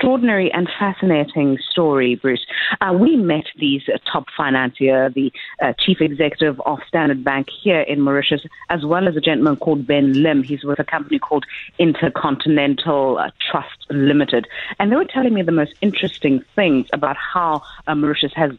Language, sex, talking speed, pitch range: English, female, 170 wpm, 140-185 Hz